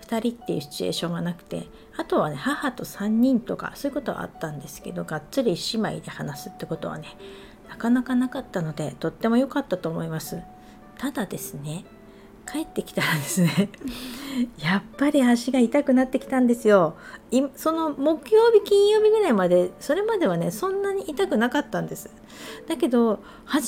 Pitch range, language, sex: 185-260 Hz, Japanese, female